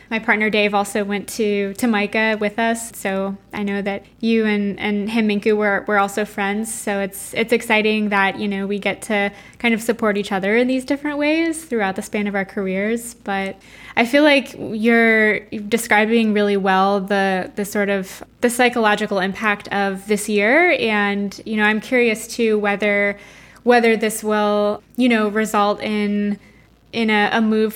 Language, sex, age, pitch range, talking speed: English, female, 10-29, 200-225 Hz, 180 wpm